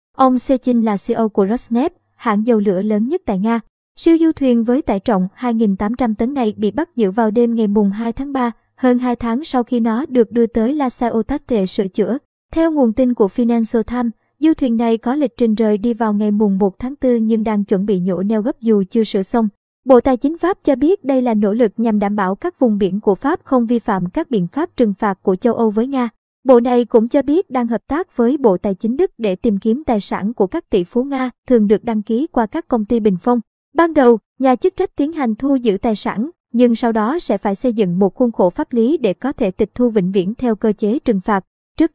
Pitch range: 220-260 Hz